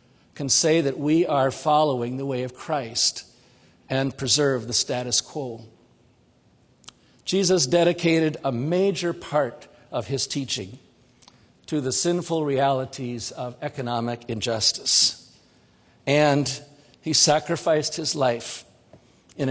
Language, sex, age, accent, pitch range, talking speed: English, male, 50-69, American, 125-155 Hz, 110 wpm